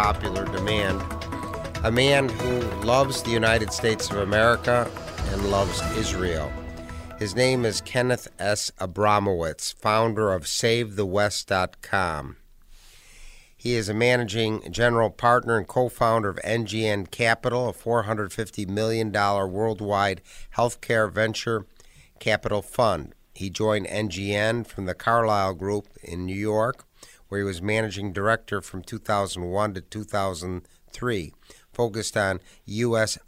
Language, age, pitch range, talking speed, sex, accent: English, 50-69, 95-115 Hz, 115 wpm, male, American